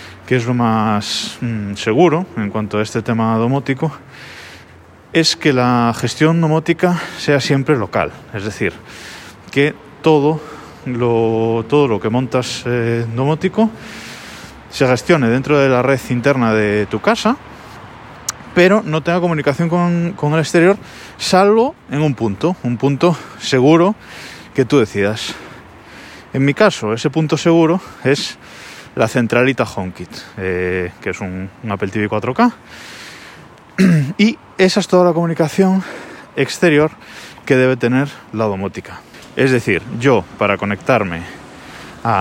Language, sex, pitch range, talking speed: Spanish, male, 110-165 Hz, 135 wpm